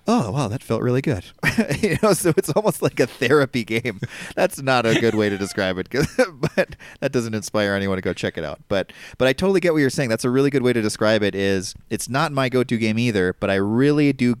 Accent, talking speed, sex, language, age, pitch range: American, 250 wpm, male, English, 30-49, 100-135 Hz